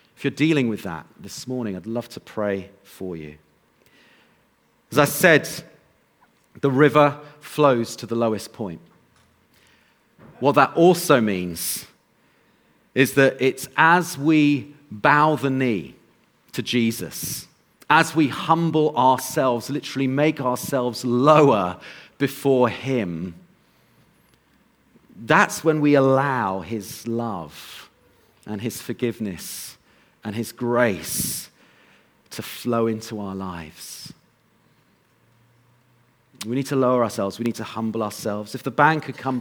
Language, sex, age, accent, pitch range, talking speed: English, male, 40-59, British, 115-145 Hz, 120 wpm